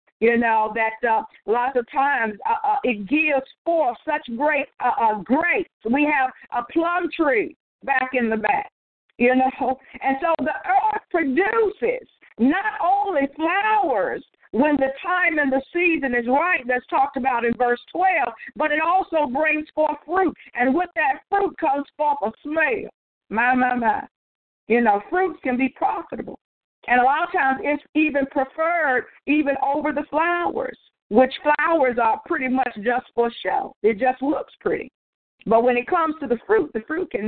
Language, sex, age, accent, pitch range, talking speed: English, female, 50-69, American, 245-335 Hz, 170 wpm